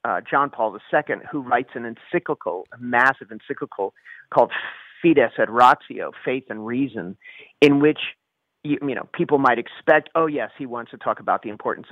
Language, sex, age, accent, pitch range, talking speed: English, male, 40-59, American, 120-160 Hz, 175 wpm